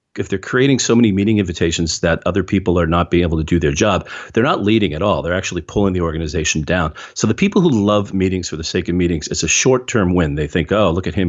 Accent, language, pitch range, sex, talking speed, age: American, English, 85-105 Hz, male, 270 wpm, 40-59